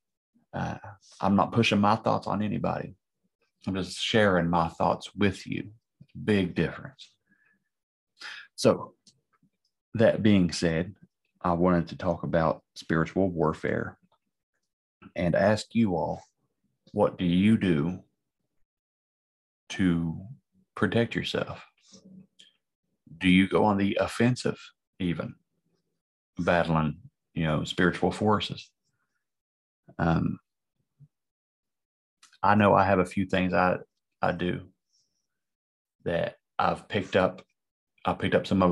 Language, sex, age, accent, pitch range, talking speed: English, male, 40-59, American, 85-105 Hz, 110 wpm